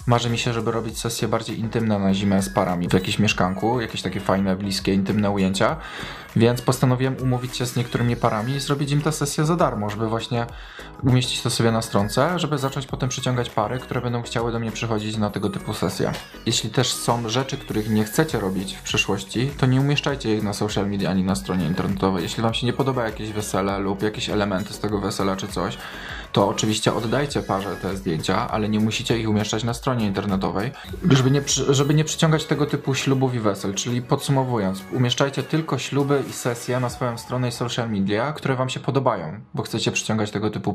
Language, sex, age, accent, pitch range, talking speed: Polish, male, 20-39, native, 100-130 Hz, 205 wpm